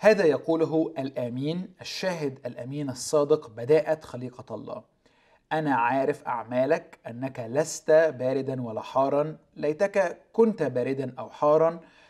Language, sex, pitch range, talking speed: Arabic, male, 125-165 Hz, 110 wpm